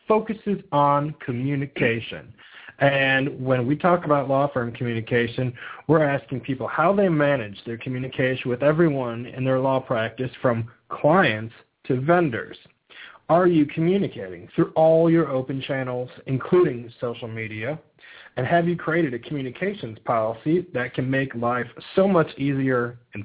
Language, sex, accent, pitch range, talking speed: English, male, American, 120-150 Hz, 140 wpm